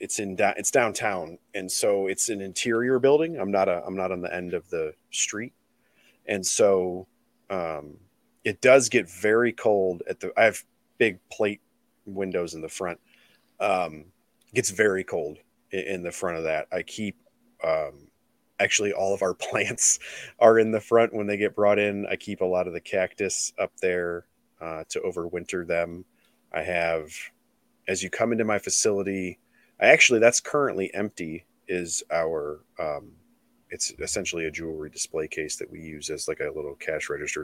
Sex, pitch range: male, 90-115 Hz